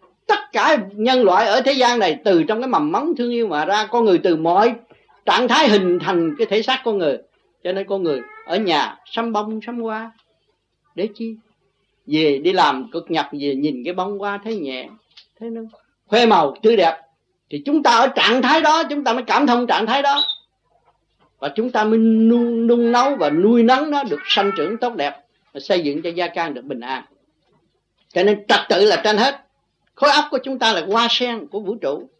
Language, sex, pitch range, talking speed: Vietnamese, male, 185-260 Hz, 220 wpm